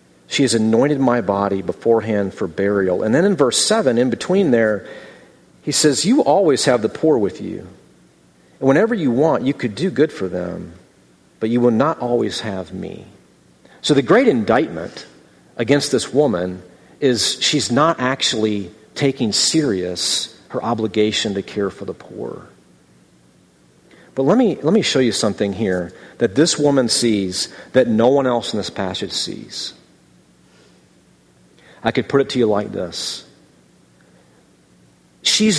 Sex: male